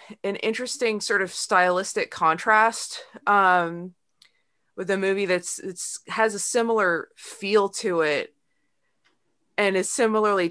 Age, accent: 20-39, American